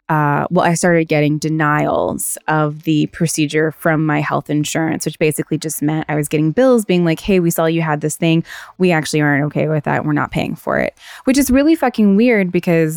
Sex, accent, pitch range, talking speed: female, American, 150-165 Hz, 215 wpm